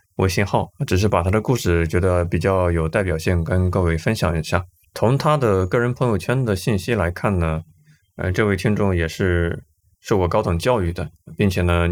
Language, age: Chinese, 20-39